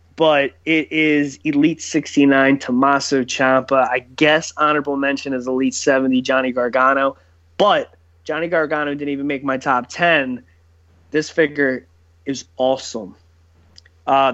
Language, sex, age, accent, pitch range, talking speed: English, male, 20-39, American, 135-155 Hz, 125 wpm